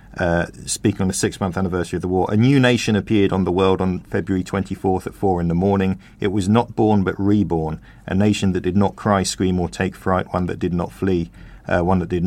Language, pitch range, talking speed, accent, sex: English, 90-105 Hz, 245 wpm, British, male